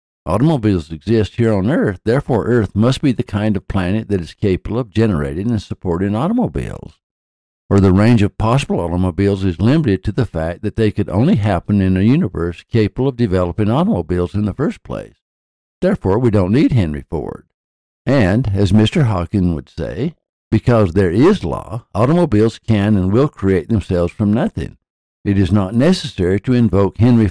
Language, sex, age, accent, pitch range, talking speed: English, male, 60-79, American, 90-115 Hz, 175 wpm